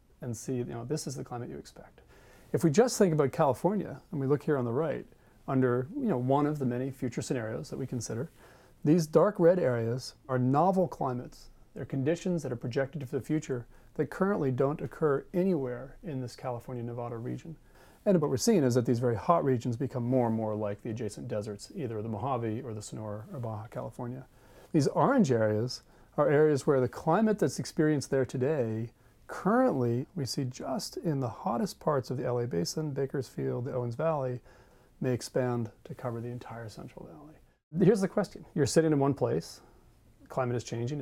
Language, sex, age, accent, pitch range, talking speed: English, male, 40-59, American, 120-150 Hz, 195 wpm